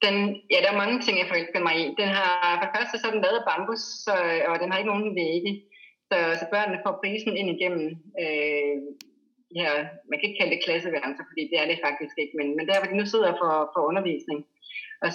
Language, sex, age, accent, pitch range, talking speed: Danish, female, 30-49, native, 165-210 Hz, 240 wpm